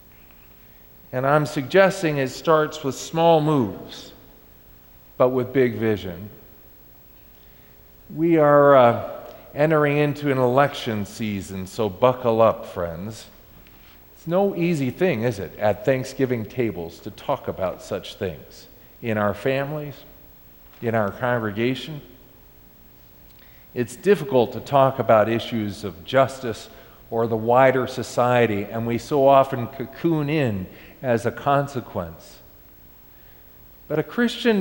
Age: 50-69